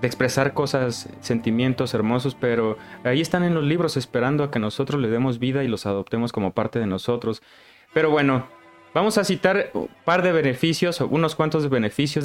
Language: Spanish